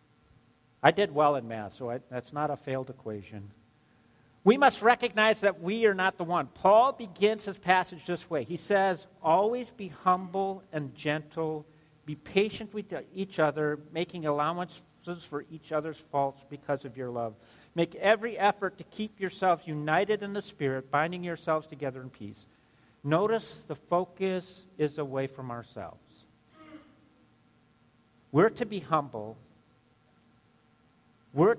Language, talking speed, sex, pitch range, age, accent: English, 145 wpm, male, 125-190 Hz, 50-69, American